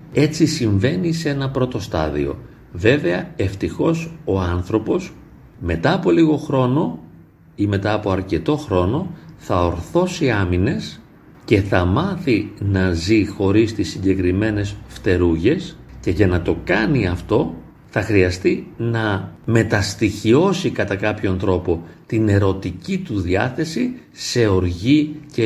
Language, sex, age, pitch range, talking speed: Greek, male, 40-59, 95-145 Hz, 120 wpm